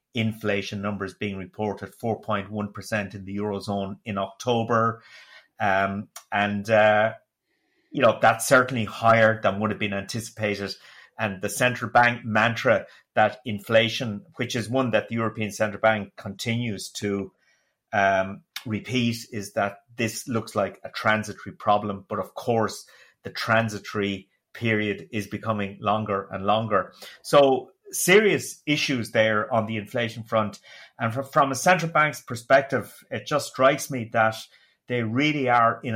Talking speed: 140 wpm